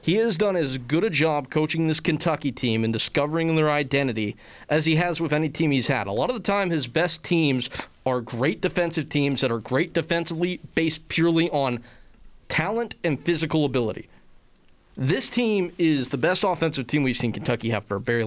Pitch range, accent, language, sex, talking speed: 120-165 Hz, American, English, male, 195 wpm